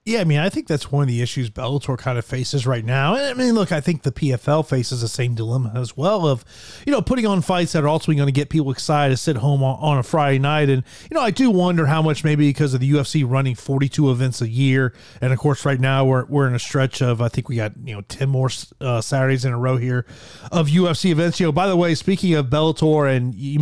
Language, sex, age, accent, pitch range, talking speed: English, male, 30-49, American, 130-160 Hz, 270 wpm